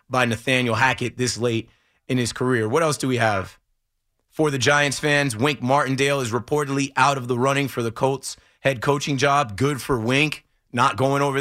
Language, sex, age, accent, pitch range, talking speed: English, male, 30-49, American, 115-140 Hz, 195 wpm